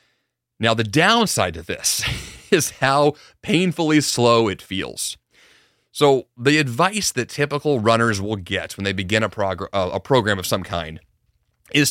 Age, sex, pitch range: 30-49, male, 100-140 Hz